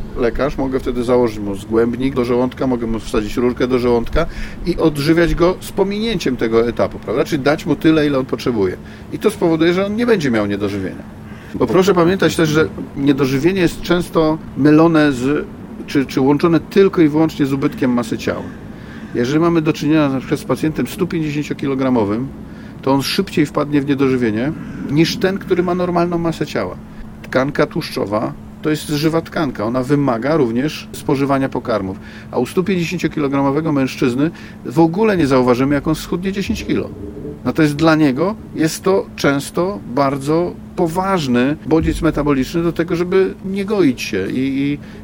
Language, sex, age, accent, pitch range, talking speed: Polish, male, 40-59, native, 130-170 Hz, 165 wpm